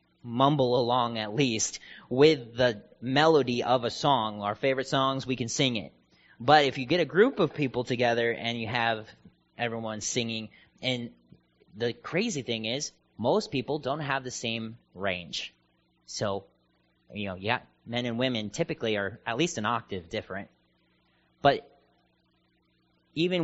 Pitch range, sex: 110-140 Hz, male